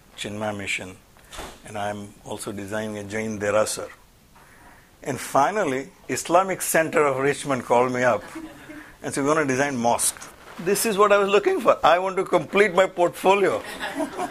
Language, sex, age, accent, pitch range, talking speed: English, male, 60-79, Indian, 110-170 Hz, 165 wpm